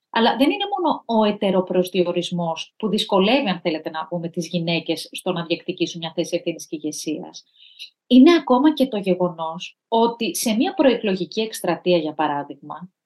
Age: 30-49